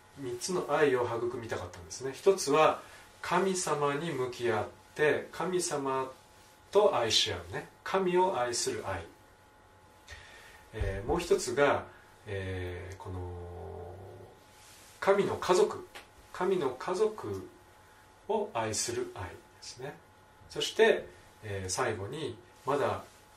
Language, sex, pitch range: Japanese, male, 95-145 Hz